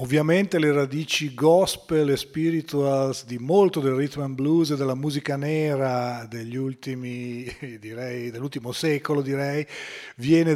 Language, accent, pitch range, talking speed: Italian, native, 130-155 Hz, 130 wpm